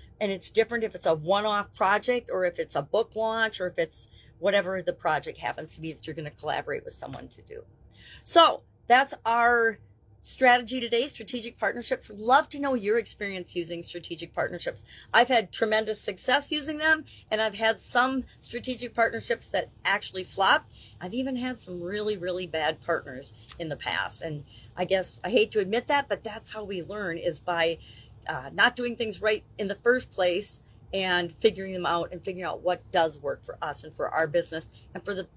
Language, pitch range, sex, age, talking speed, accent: English, 180-235 Hz, female, 40-59, 195 wpm, American